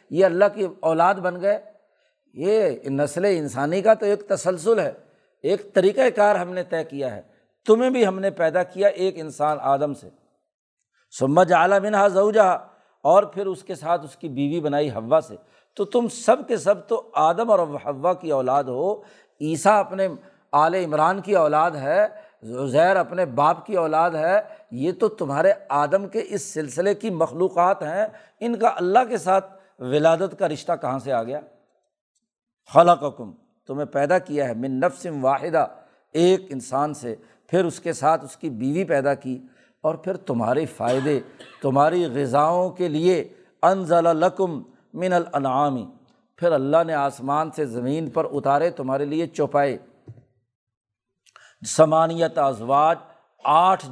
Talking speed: 155 wpm